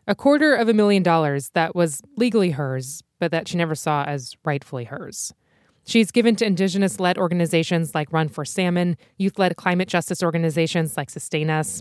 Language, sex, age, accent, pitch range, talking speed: English, female, 20-39, American, 150-185 Hz, 175 wpm